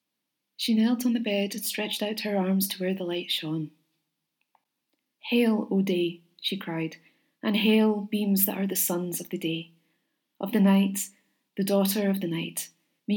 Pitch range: 175-210 Hz